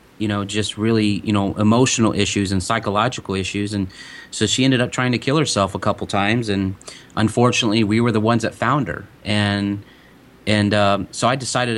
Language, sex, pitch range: English, male, 100-115 Hz